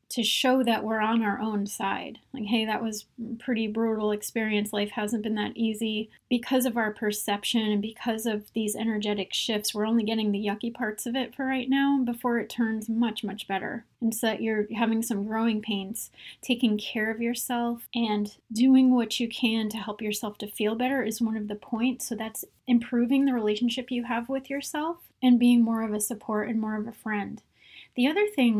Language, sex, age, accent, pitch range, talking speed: English, female, 30-49, American, 210-240 Hz, 205 wpm